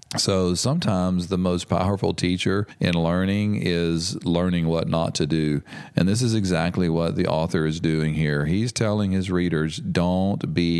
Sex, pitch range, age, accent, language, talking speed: male, 80-95 Hz, 40-59, American, English, 165 wpm